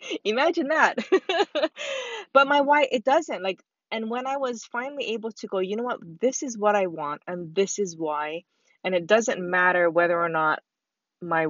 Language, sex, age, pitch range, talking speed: English, female, 20-39, 165-240 Hz, 190 wpm